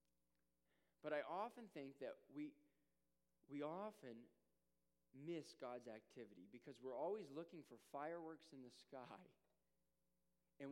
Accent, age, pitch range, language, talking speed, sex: American, 20-39, 105-150 Hz, English, 120 wpm, male